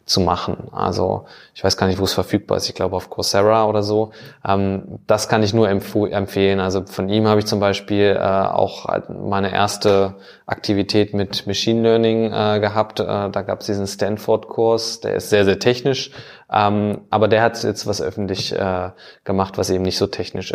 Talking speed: 170 wpm